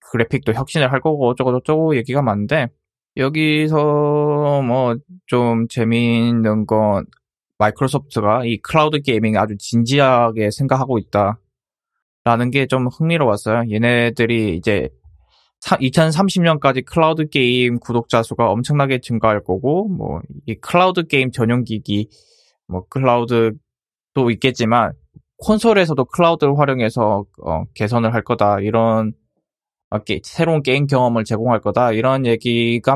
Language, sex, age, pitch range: Korean, male, 20-39, 115-155 Hz